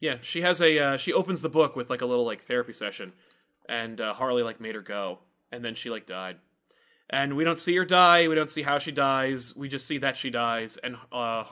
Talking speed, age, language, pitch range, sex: 250 wpm, 20-39, English, 120-155 Hz, male